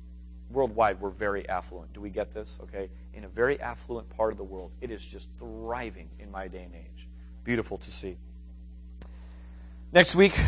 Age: 30-49